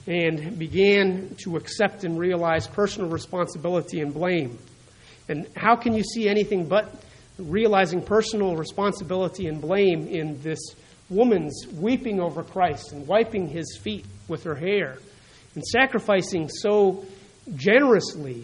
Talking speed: 125 wpm